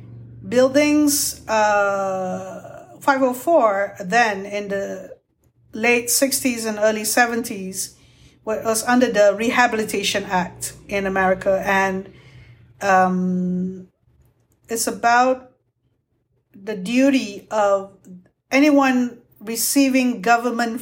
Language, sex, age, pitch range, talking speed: English, female, 50-69, 190-240 Hz, 80 wpm